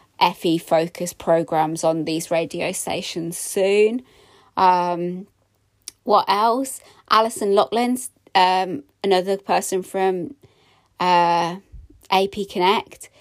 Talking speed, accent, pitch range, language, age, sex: 90 wpm, British, 175-200 Hz, English, 20-39, female